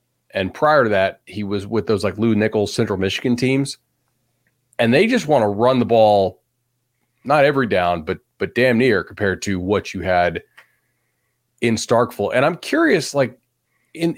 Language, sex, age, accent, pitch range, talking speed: English, male, 40-59, American, 100-140 Hz, 170 wpm